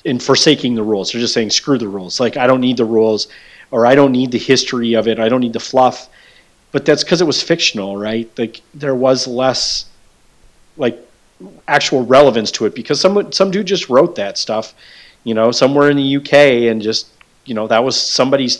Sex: male